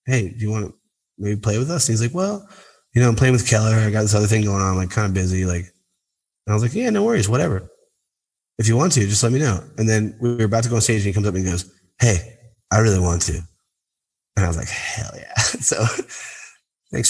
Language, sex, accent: English, male, American